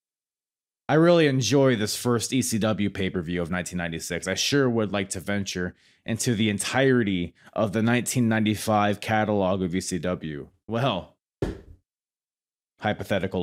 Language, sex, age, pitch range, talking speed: English, male, 30-49, 100-145 Hz, 115 wpm